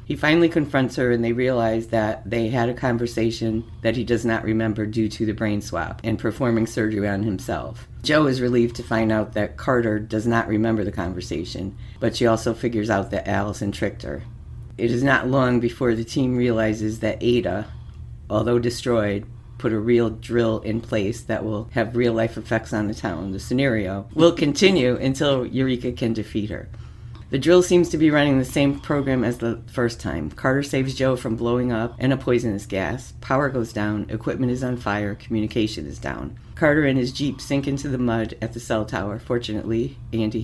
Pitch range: 110-130 Hz